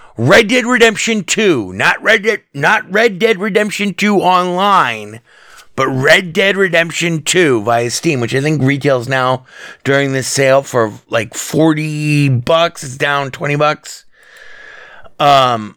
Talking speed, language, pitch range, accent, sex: 140 wpm, English, 135-190 Hz, American, male